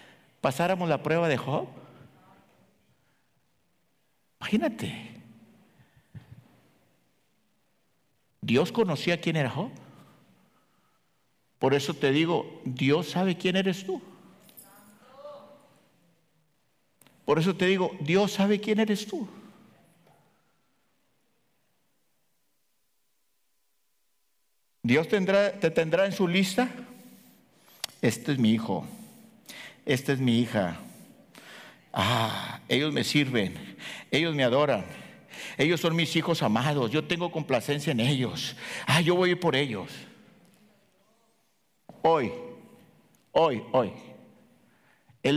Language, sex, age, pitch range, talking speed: English, male, 60-79, 130-195 Hz, 95 wpm